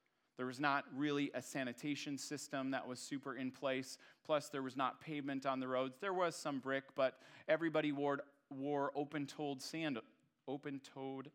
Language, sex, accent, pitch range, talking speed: English, male, American, 115-145 Hz, 165 wpm